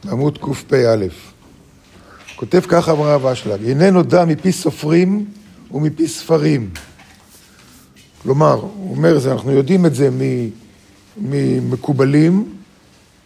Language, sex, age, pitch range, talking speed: Hebrew, male, 50-69, 130-180 Hz, 100 wpm